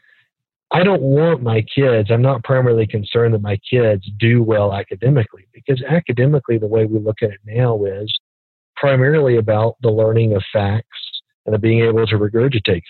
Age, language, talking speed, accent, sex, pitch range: 40-59, English, 170 wpm, American, male, 105-130 Hz